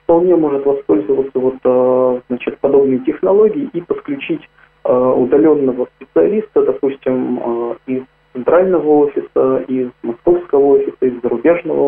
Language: Russian